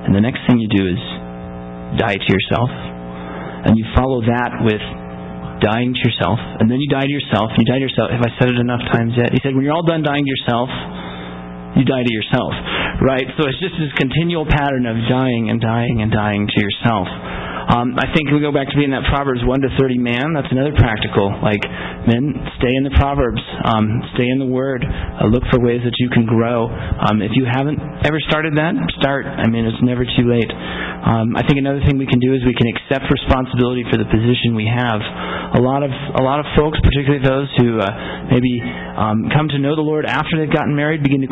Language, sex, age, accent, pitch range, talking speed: English, male, 30-49, American, 110-140 Hz, 225 wpm